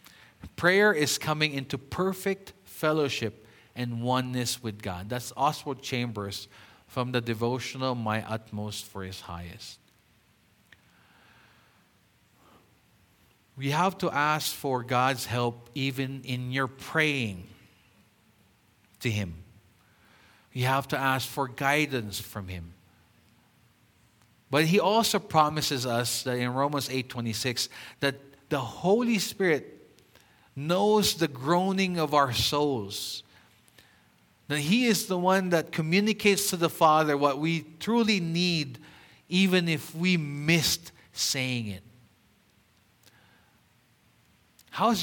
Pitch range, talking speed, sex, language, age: 115-160 Hz, 110 wpm, male, English, 50-69